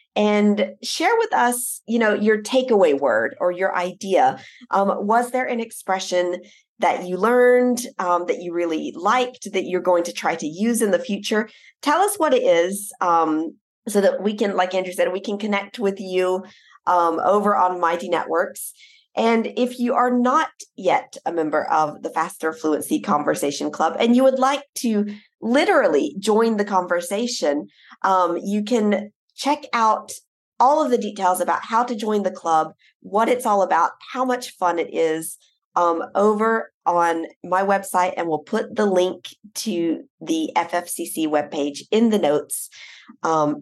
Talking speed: 170 wpm